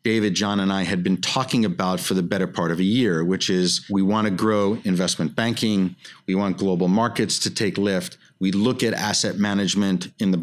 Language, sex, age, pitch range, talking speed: English, male, 50-69, 95-110 Hz, 215 wpm